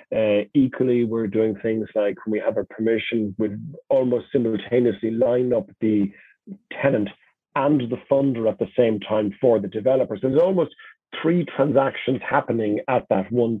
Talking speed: 160 wpm